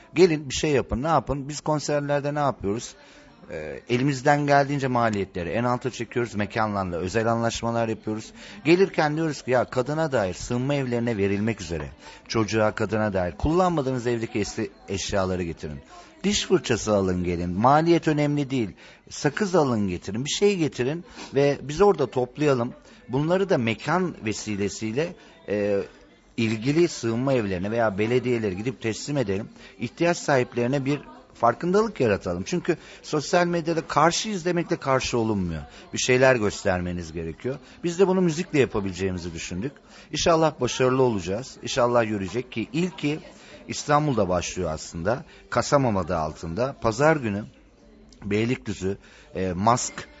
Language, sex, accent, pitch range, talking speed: English, male, Turkish, 105-145 Hz, 130 wpm